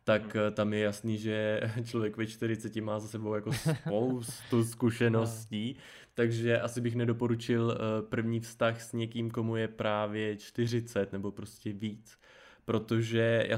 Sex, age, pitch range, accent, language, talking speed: male, 20-39, 105-115 Hz, native, Czech, 135 wpm